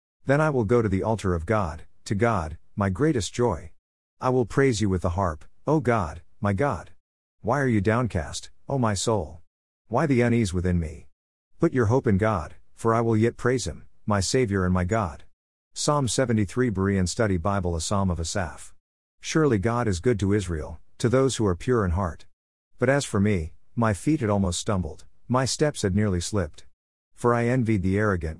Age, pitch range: 50-69, 85-115 Hz